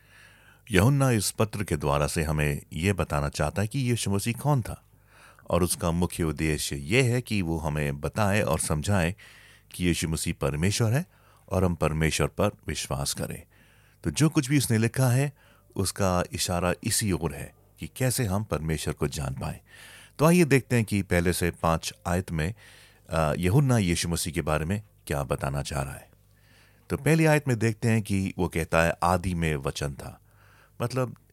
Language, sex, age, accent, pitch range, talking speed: Hindi, male, 30-49, native, 85-110 Hz, 180 wpm